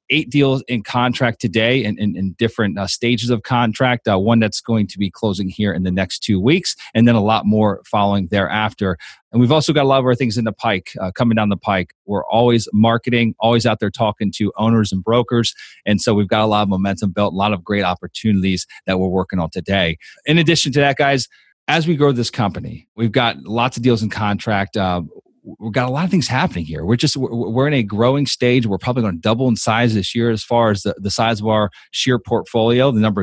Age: 30-49